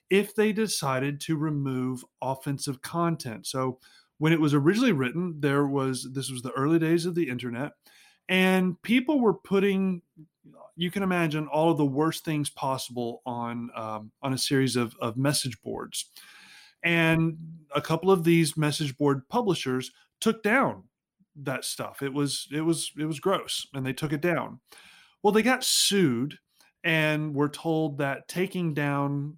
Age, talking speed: 30-49, 160 wpm